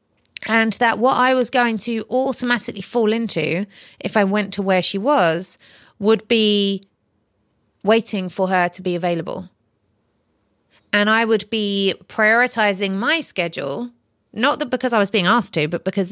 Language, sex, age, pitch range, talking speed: English, female, 30-49, 185-225 Hz, 155 wpm